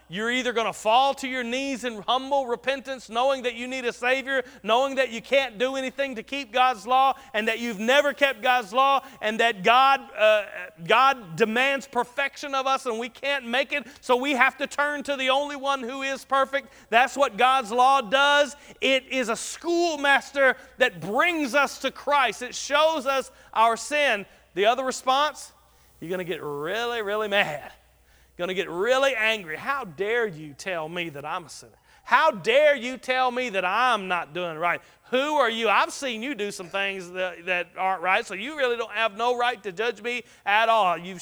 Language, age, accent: English, 40-59, American